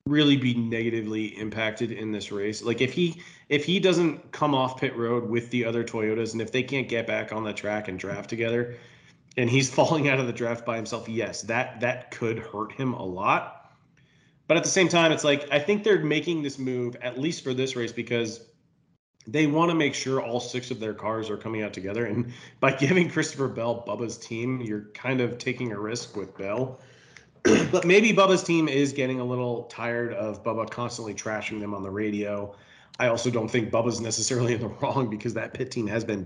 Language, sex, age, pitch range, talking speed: English, male, 30-49, 110-135 Hz, 215 wpm